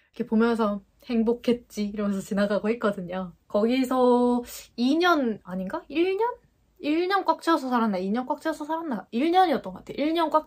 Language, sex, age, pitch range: Korean, female, 20-39, 210-300 Hz